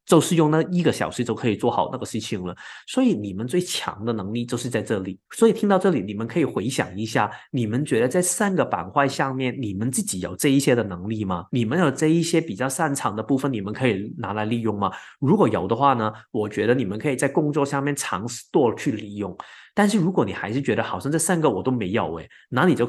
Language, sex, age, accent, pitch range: Chinese, male, 20-39, native, 110-160 Hz